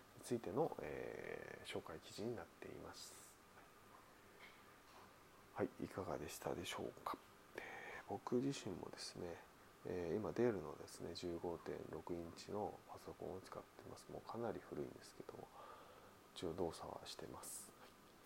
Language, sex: Japanese, male